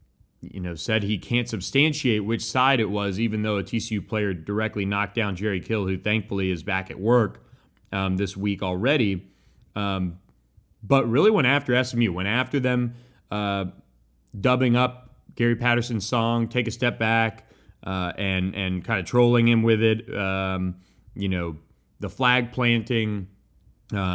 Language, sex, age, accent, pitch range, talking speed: English, male, 30-49, American, 95-120 Hz, 160 wpm